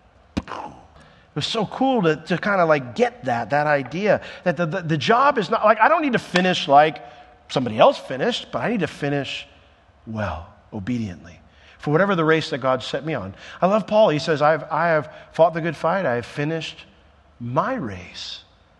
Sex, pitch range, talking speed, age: male, 95-155 Hz, 200 wpm, 50-69